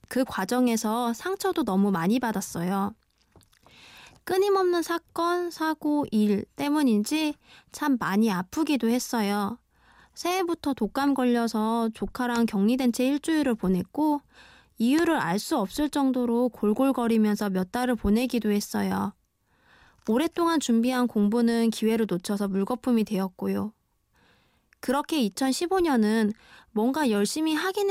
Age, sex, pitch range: 20-39, female, 210-300 Hz